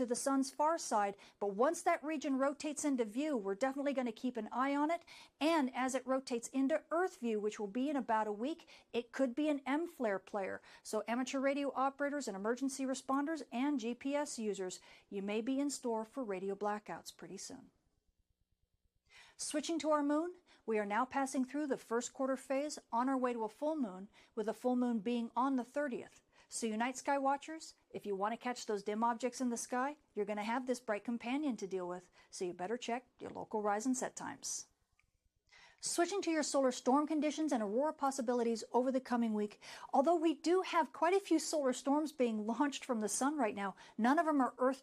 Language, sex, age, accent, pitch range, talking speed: English, female, 50-69, American, 230-295 Hz, 215 wpm